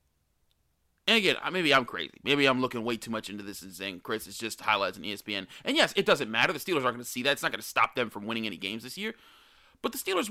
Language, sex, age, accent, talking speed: English, male, 30-49, American, 280 wpm